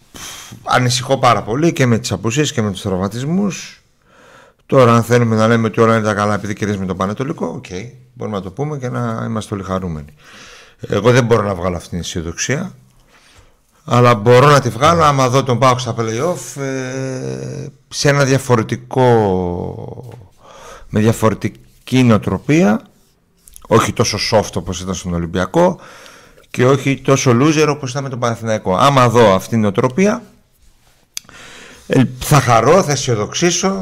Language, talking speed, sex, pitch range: Greek, 150 wpm, male, 100-130 Hz